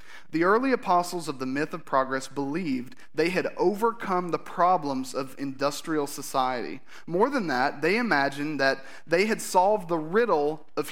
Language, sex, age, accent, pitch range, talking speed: English, male, 30-49, American, 130-175 Hz, 160 wpm